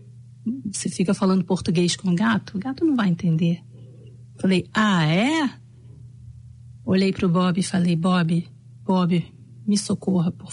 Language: English